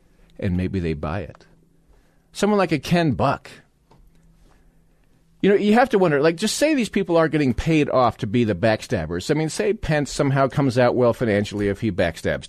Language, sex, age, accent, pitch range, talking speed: English, male, 40-59, American, 105-160 Hz, 195 wpm